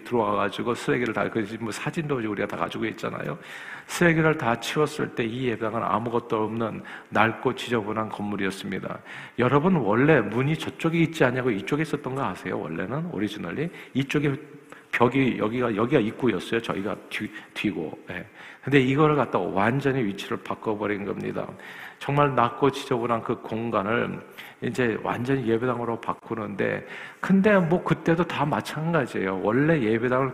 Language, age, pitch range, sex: Korean, 50-69, 115-150 Hz, male